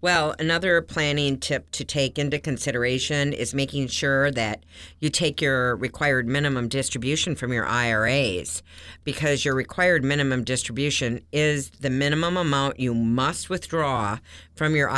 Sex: female